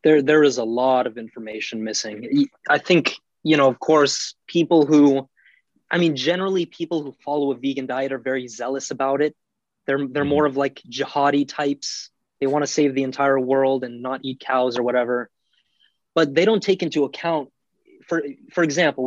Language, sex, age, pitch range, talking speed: English, male, 20-39, 130-155 Hz, 185 wpm